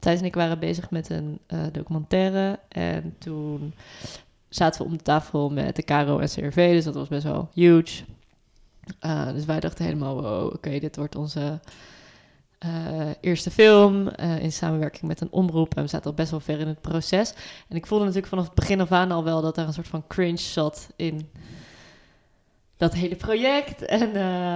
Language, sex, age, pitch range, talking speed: Dutch, female, 20-39, 160-210 Hz, 190 wpm